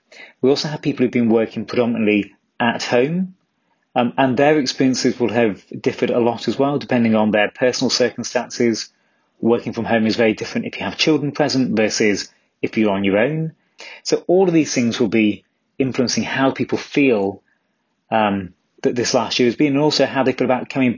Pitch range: 110-130 Hz